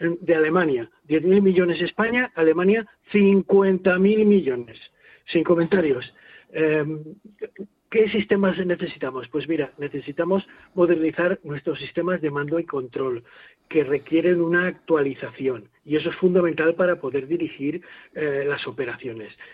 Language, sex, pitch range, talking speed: Spanish, male, 155-195 Hz, 115 wpm